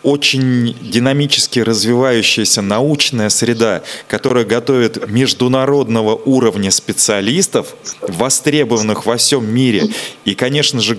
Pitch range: 110-130 Hz